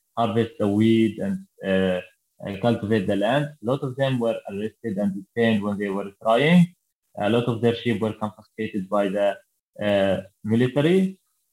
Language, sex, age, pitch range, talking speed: English, male, 20-39, 105-120 Hz, 165 wpm